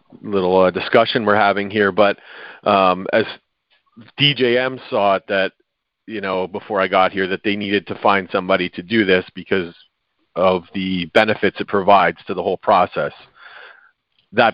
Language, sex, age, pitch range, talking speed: English, male, 40-59, 95-110 Hz, 160 wpm